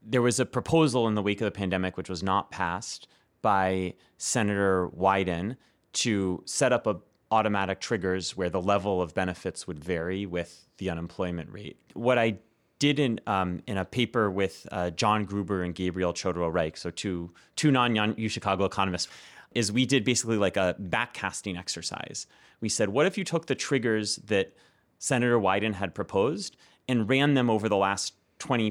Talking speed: 175 wpm